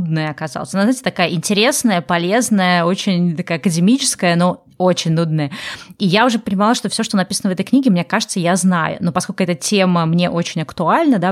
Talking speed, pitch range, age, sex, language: 185 wpm, 170-215 Hz, 20-39, female, Russian